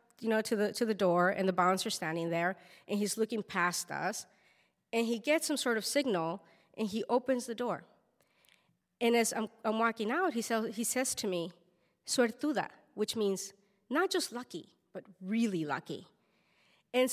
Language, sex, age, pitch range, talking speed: English, female, 30-49, 195-265 Hz, 180 wpm